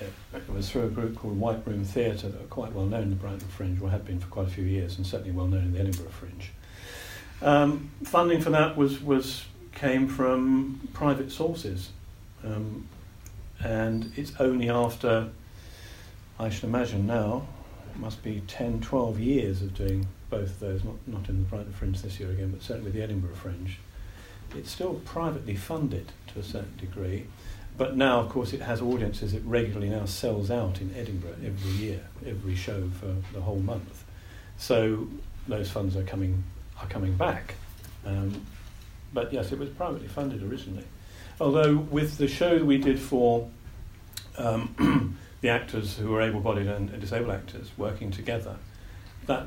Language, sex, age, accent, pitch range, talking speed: English, male, 50-69, British, 95-120 Hz, 170 wpm